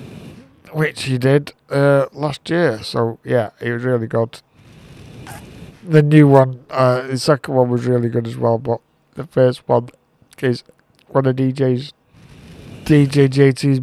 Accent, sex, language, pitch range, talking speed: British, male, English, 130-150 Hz, 150 wpm